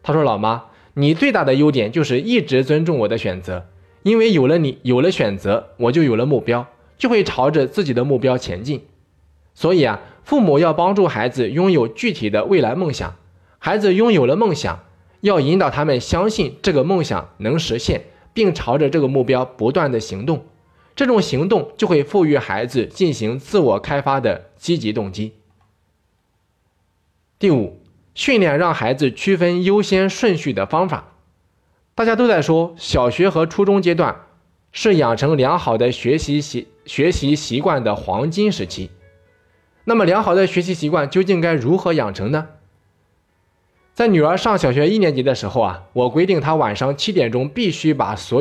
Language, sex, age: Chinese, male, 20-39